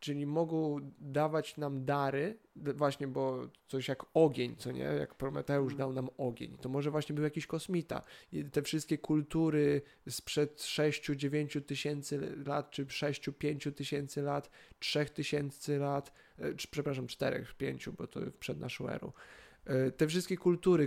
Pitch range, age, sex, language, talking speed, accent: 140-155 Hz, 20-39, male, Polish, 140 wpm, native